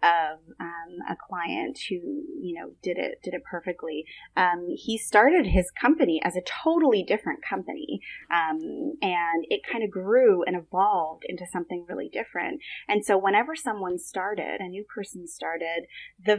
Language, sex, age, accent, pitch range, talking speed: English, female, 30-49, American, 180-280 Hz, 160 wpm